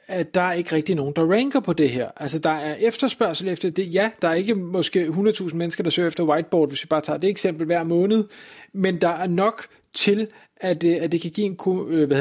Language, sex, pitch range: Danish, male, 155-210 Hz